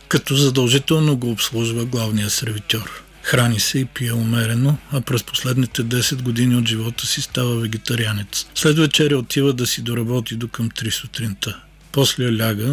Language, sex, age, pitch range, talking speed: Bulgarian, male, 50-69, 115-130 Hz, 155 wpm